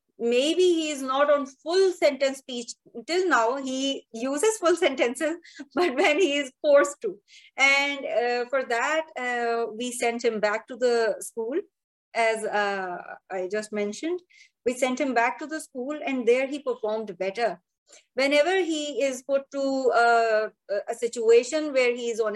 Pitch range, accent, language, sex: 225-295 Hz, Indian, English, female